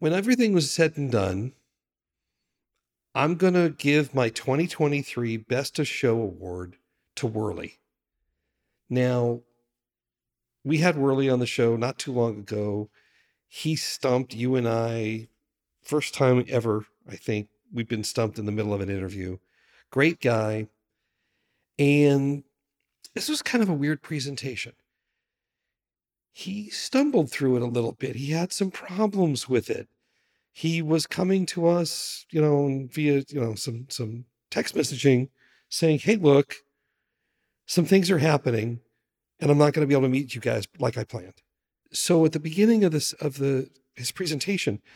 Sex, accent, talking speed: male, American, 155 wpm